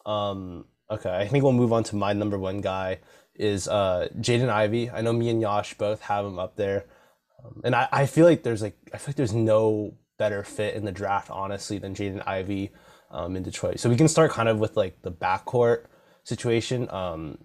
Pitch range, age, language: 100-115 Hz, 20-39, English